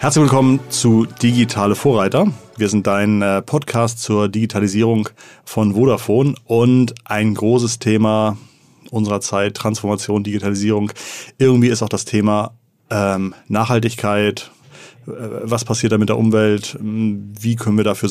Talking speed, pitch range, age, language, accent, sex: 125 wpm, 100-115 Hz, 30-49, German, German, male